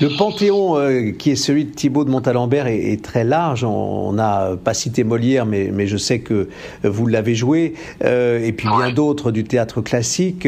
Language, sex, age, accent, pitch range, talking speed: French, male, 50-69, French, 110-150 Hz, 200 wpm